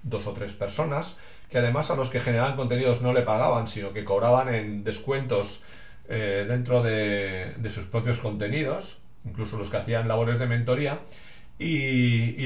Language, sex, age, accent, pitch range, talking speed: English, male, 40-59, Spanish, 105-125 Hz, 170 wpm